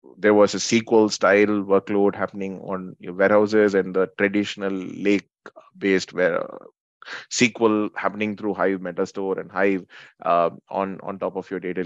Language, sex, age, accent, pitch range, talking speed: English, male, 20-39, Indian, 90-105 Hz, 140 wpm